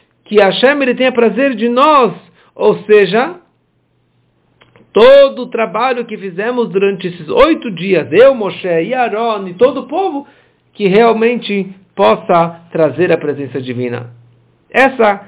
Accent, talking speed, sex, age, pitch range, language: Brazilian, 135 wpm, male, 60-79, 150-210 Hz, English